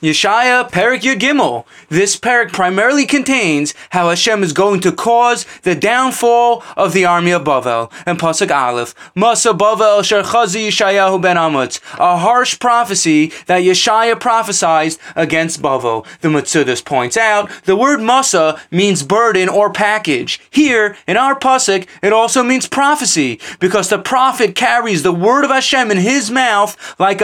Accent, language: American, English